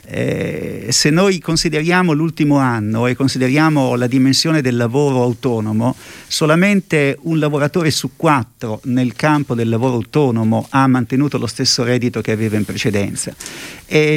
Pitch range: 120-145 Hz